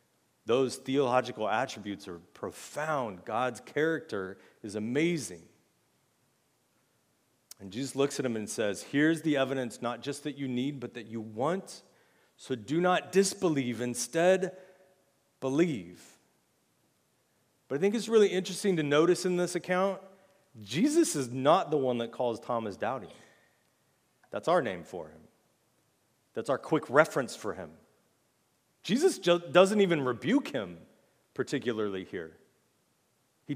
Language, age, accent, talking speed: English, 40-59, American, 130 wpm